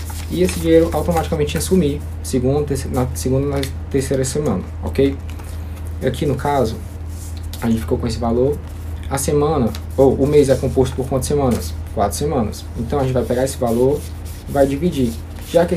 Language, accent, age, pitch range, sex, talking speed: Portuguese, Brazilian, 20-39, 85-130 Hz, male, 180 wpm